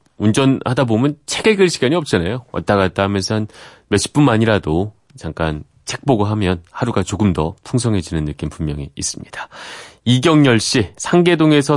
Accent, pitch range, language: native, 100-145 Hz, Korean